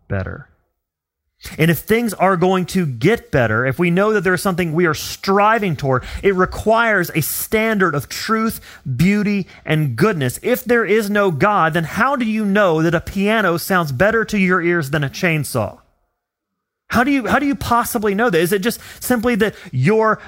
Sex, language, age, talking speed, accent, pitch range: male, English, 30-49, 190 wpm, American, 145-205 Hz